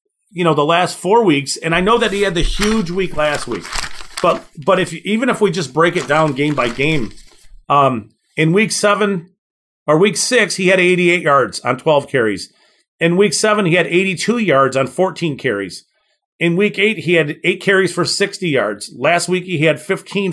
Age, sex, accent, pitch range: 40-59, male, American, 145-190 Hz